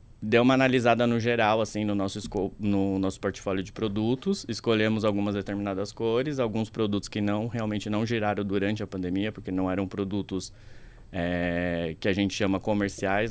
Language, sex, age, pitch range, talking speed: Portuguese, male, 20-39, 100-115 Hz, 170 wpm